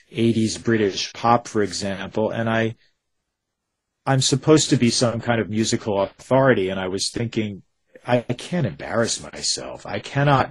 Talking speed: 155 wpm